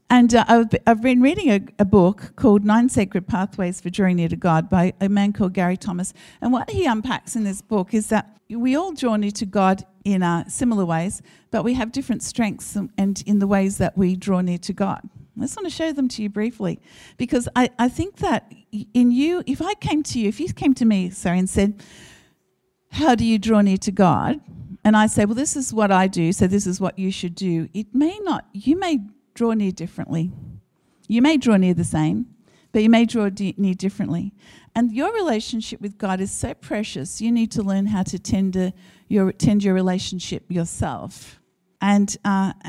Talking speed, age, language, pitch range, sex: 215 wpm, 50-69, English, 190-230 Hz, female